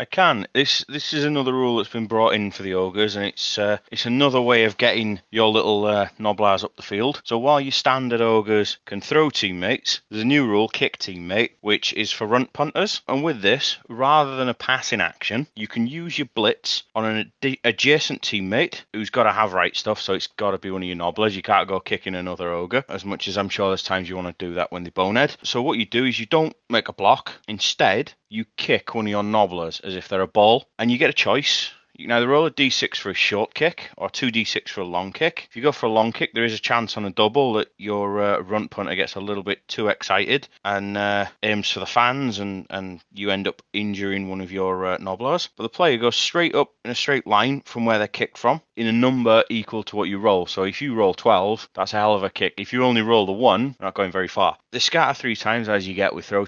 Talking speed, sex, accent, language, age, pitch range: 255 wpm, male, British, English, 30-49, 100-125 Hz